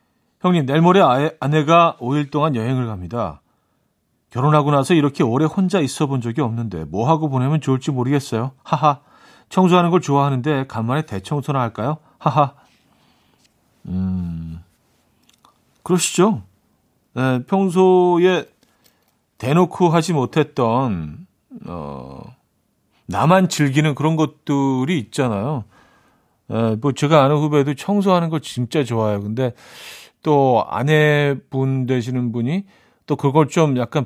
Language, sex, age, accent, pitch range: Korean, male, 40-59, native, 120-160 Hz